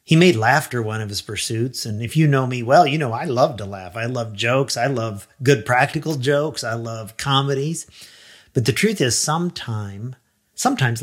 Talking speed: 190 wpm